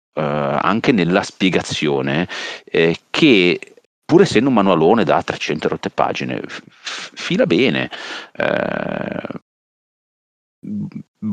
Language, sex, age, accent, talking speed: Italian, male, 40-59, native, 100 wpm